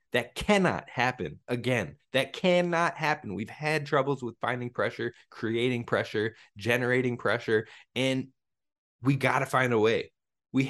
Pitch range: 115-145 Hz